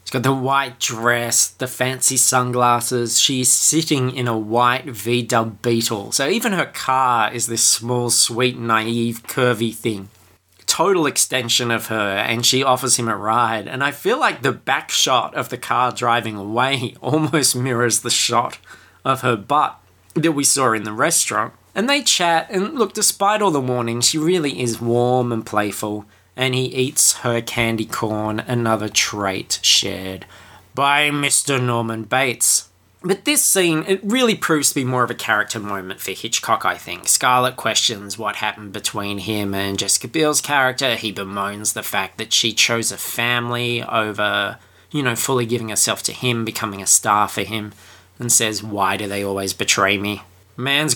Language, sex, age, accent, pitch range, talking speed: English, male, 20-39, Australian, 105-130 Hz, 170 wpm